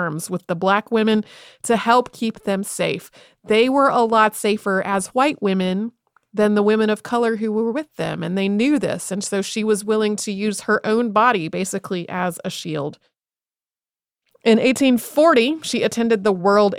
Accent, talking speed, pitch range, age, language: American, 180 wpm, 185-225 Hz, 30-49, English